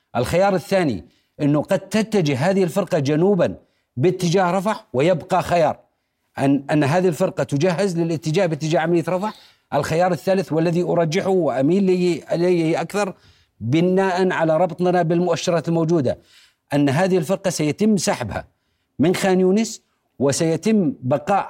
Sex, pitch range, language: male, 165-195 Hz, Arabic